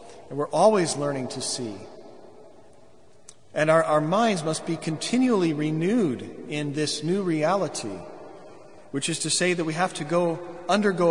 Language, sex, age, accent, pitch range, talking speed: English, male, 40-59, American, 145-185 Hz, 150 wpm